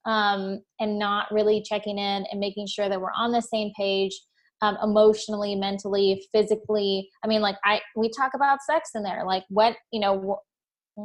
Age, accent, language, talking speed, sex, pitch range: 20-39, American, English, 185 wpm, female, 200-230 Hz